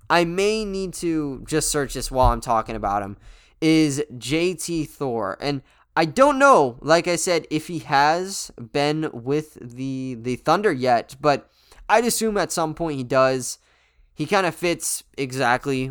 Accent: American